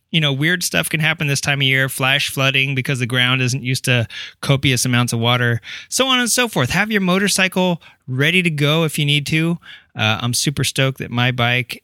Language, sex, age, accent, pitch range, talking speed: English, male, 20-39, American, 125-160 Hz, 225 wpm